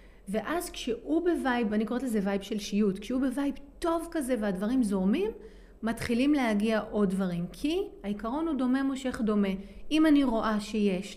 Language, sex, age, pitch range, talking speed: Hebrew, female, 30-49, 195-255 Hz, 155 wpm